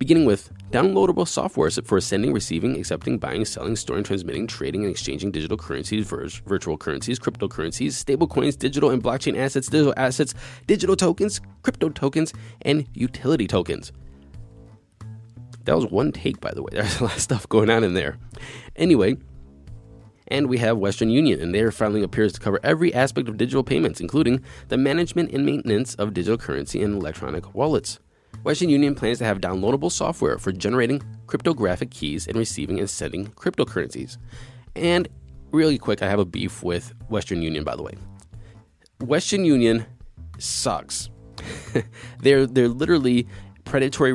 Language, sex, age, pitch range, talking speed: English, male, 20-39, 100-130 Hz, 155 wpm